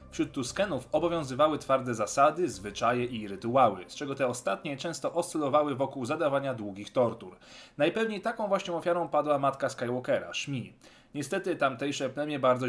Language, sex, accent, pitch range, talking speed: Polish, male, native, 120-155 Hz, 140 wpm